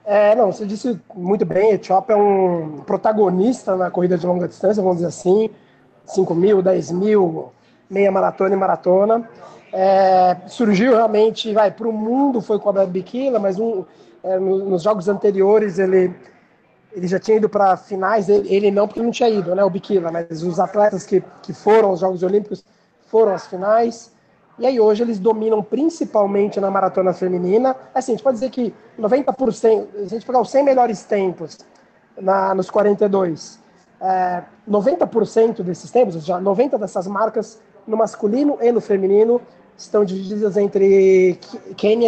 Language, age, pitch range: Portuguese, 20-39, 190-225 Hz